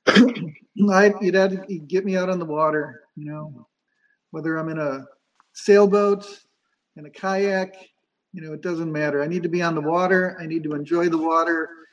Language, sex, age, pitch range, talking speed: English, male, 50-69, 155-190 Hz, 180 wpm